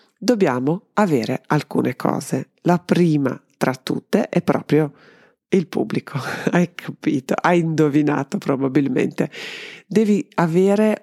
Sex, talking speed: female, 105 wpm